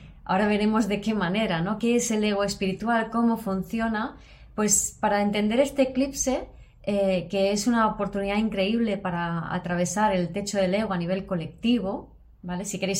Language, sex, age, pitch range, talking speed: Spanish, female, 20-39, 185-215 Hz, 165 wpm